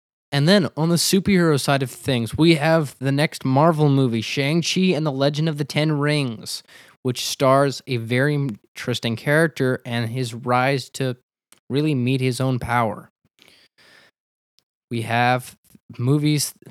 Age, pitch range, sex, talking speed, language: 20-39, 125-155 Hz, male, 145 wpm, English